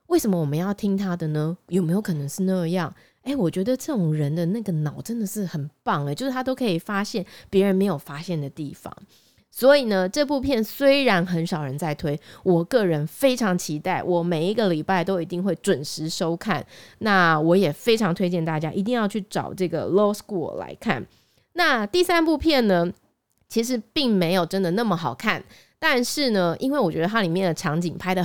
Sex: female